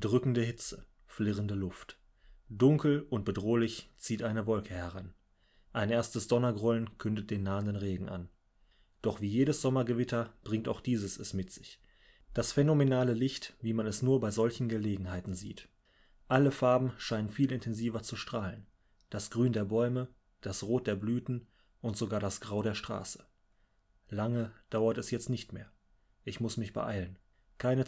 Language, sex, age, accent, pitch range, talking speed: German, male, 30-49, German, 100-120 Hz, 155 wpm